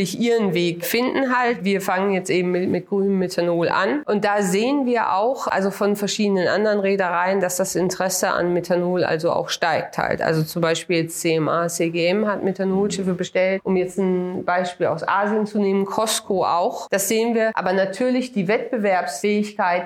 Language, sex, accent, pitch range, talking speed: Danish, female, German, 175-210 Hz, 170 wpm